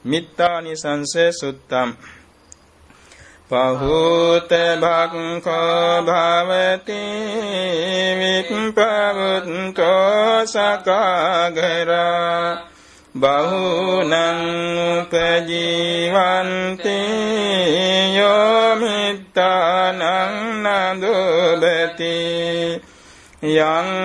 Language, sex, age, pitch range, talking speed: Vietnamese, male, 60-79, 170-190 Hz, 45 wpm